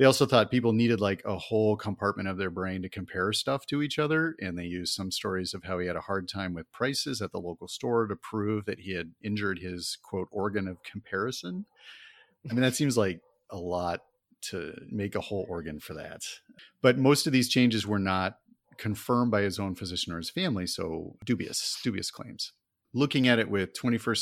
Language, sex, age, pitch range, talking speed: English, male, 40-59, 90-115 Hz, 210 wpm